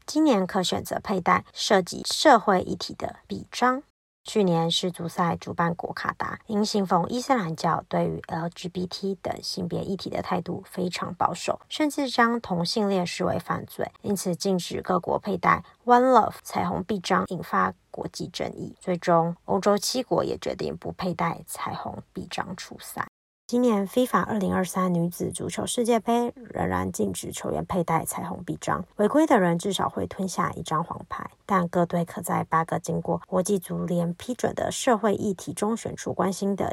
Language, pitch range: Chinese, 170-220 Hz